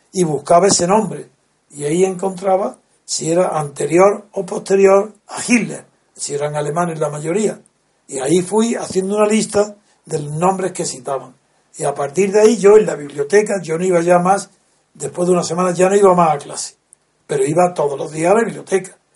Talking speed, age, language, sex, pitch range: 195 wpm, 60-79, Spanish, male, 160-195 Hz